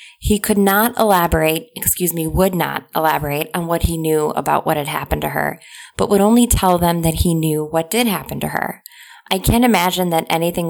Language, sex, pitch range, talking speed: English, female, 160-200 Hz, 210 wpm